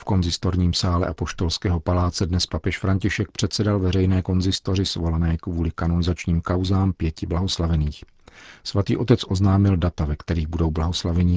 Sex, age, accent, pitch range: male, 40-59, native, 85-100 Hz